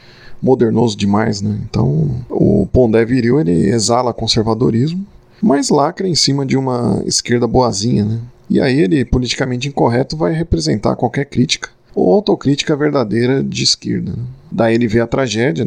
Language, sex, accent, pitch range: Portuguese, male, Brazilian, 115-140 Hz